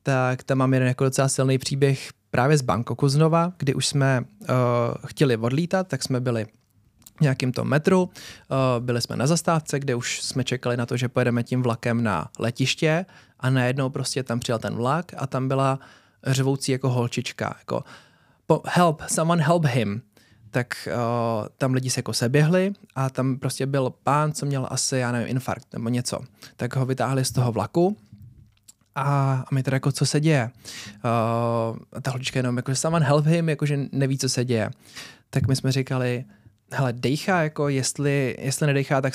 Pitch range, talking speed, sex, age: 120-140 Hz, 180 wpm, male, 20-39